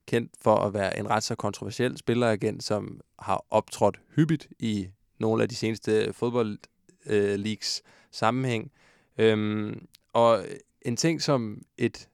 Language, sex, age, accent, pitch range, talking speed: Danish, male, 20-39, native, 105-125 Hz, 125 wpm